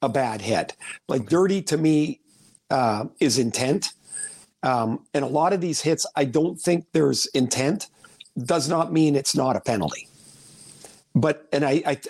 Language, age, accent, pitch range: English, 50-69, American, 135-170 Hz